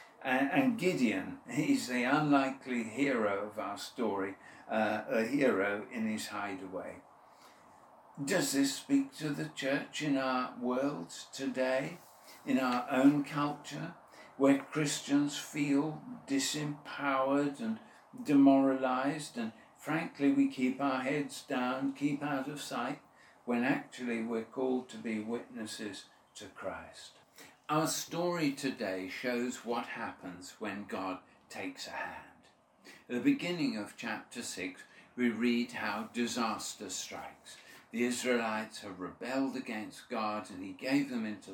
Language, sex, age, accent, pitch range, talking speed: English, male, 60-79, British, 120-150 Hz, 125 wpm